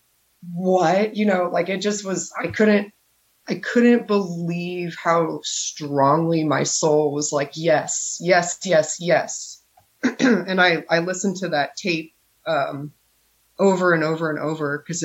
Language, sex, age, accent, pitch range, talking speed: English, female, 30-49, American, 150-175 Hz, 145 wpm